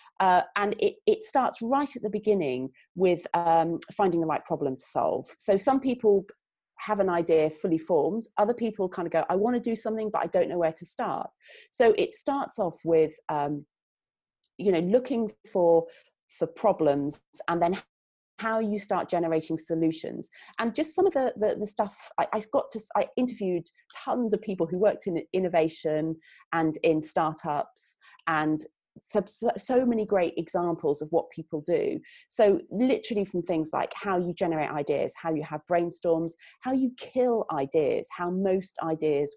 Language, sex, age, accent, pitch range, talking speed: English, female, 30-49, British, 165-225 Hz, 175 wpm